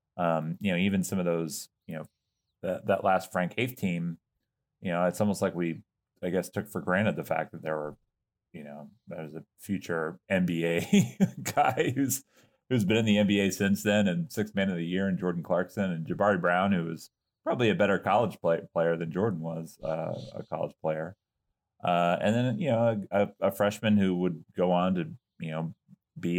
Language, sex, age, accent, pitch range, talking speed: English, male, 30-49, American, 85-110 Hz, 200 wpm